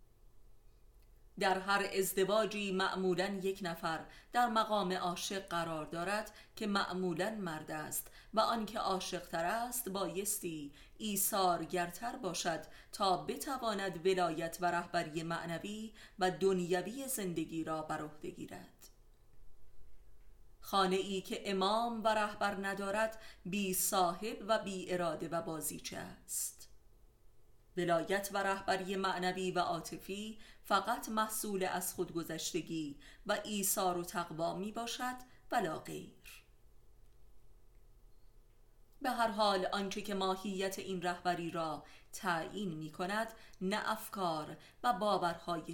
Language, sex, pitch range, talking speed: Persian, female, 165-205 Hz, 115 wpm